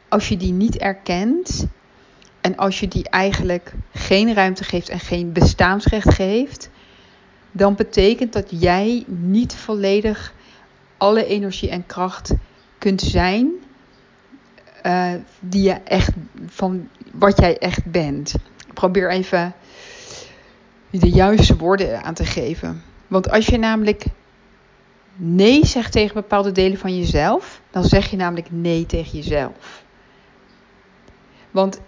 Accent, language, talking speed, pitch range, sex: Dutch, Dutch, 125 wpm, 180-205 Hz, female